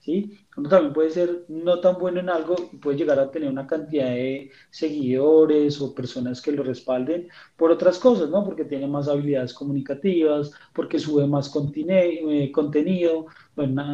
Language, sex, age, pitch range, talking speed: Spanish, male, 30-49, 145-170 Hz, 165 wpm